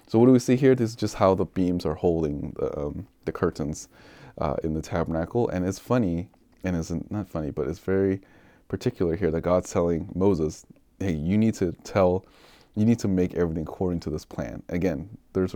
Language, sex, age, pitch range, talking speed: English, male, 20-39, 85-100 Hz, 210 wpm